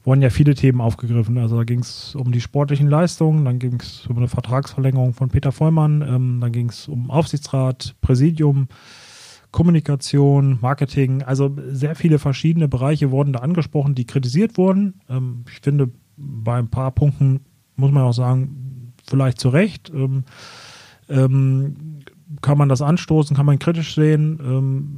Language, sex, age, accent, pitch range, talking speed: German, male, 30-49, German, 125-145 Hz, 160 wpm